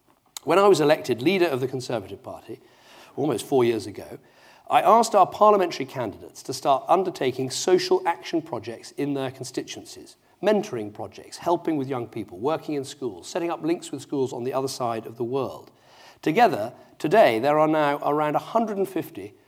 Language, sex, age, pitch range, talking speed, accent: English, male, 40-59, 125-205 Hz, 170 wpm, British